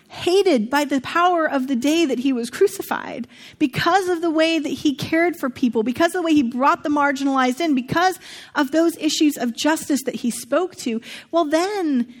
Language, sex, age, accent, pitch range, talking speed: English, female, 30-49, American, 245-315 Hz, 200 wpm